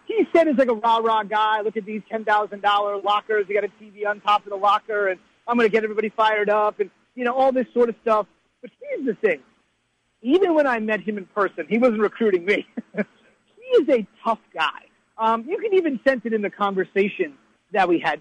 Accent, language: American, English